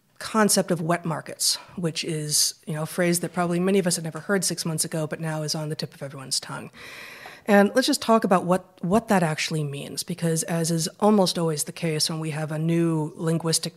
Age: 30-49